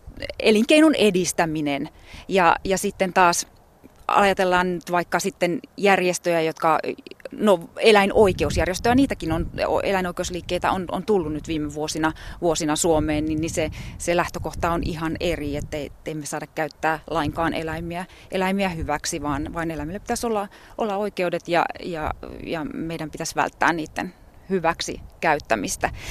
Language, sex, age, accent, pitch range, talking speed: Finnish, female, 30-49, native, 160-210 Hz, 125 wpm